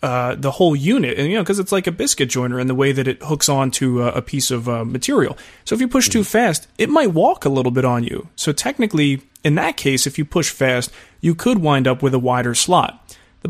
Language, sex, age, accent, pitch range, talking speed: English, male, 30-49, American, 125-155 Hz, 260 wpm